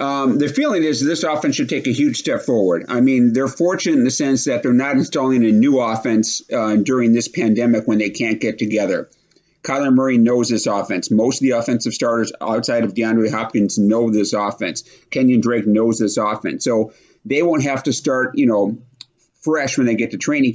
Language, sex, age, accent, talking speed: English, male, 50-69, American, 205 wpm